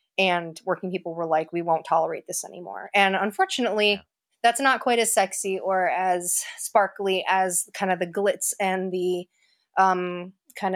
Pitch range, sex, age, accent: 170-200 Hz, female, 20-39, American